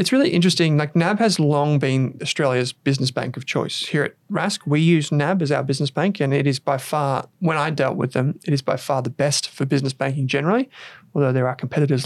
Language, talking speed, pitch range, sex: English, 235 wpm, 135-165 Hz, male